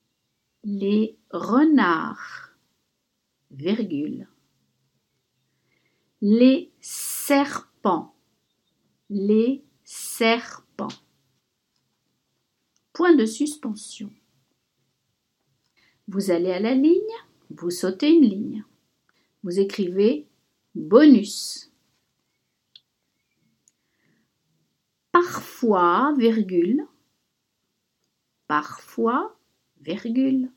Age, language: 60-79, French